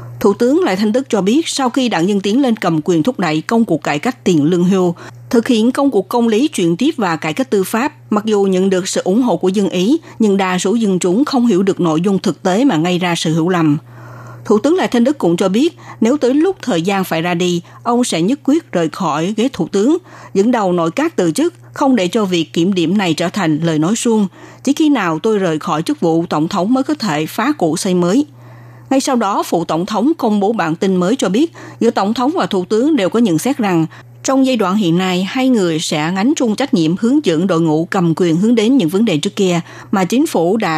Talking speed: 260 wpm